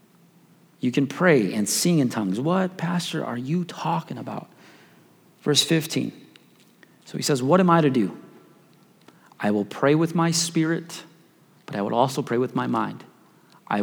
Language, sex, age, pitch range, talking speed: English, male, 30-49, 110-135 Hz, 165 wpm